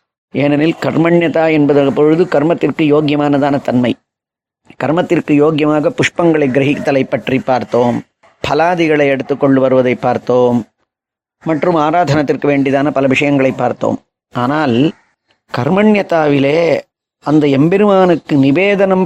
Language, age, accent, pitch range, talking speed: Tamil, 30-49, native, 135-165 Hz, 85 wpm